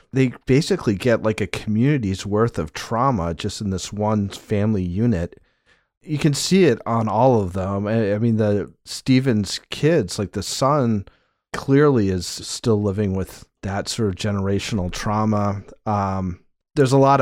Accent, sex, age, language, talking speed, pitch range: American, male, 40-59, English, 155 wpm, 100-130 Hz